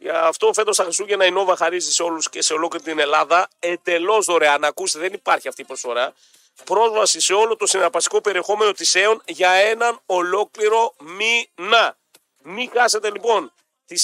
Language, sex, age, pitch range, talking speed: Greek, male, 40-59, 170-230 Hz, 165 wpm